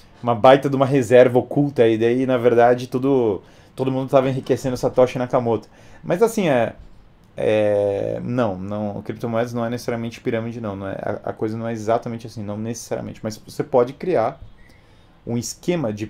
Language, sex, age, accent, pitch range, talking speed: Portuguese, male, 30-49, Brazilian, 110-150 Hz, 175 wpm